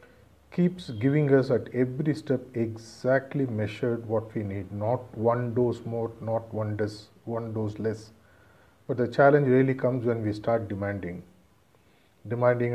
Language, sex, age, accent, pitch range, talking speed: English, male, 50-69, Indian, 105-125 Hz, 145 wpm